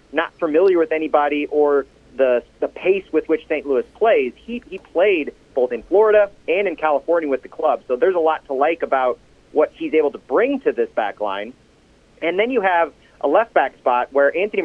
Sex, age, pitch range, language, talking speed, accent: male, 30-49, 135-195 Hz, English, 205 wpm, American